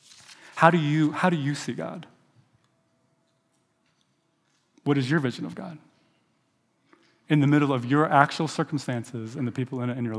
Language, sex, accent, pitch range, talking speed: English, male, American, 120-145 Hz, 165 wpm